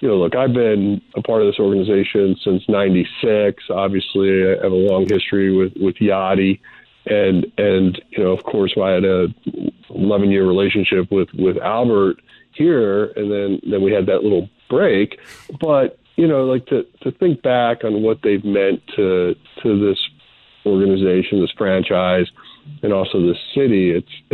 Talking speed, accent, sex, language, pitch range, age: 170 wpm, American, male, English, 95-105 Hz, 40-59